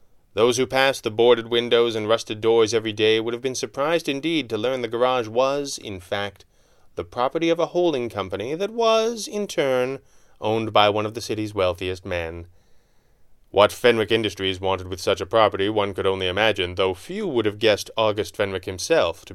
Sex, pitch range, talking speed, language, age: male, 95-125 Hz, 190 wpm, English, 30-49